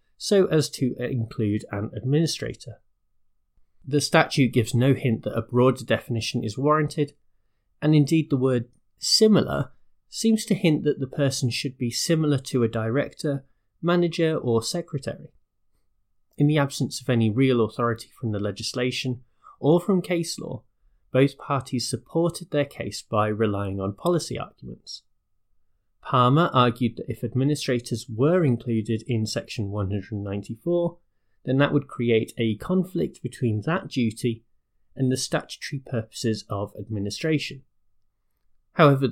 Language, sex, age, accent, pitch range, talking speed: English, male, 30-49, British, 105-145 Hz, 135 wpm